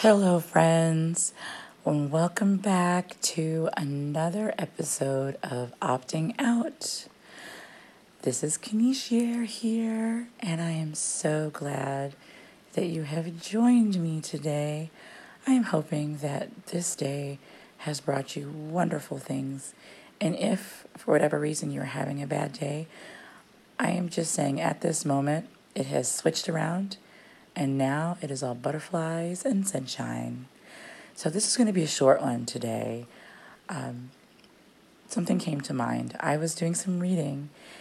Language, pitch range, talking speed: English, 135-180 Hz, 135 wpm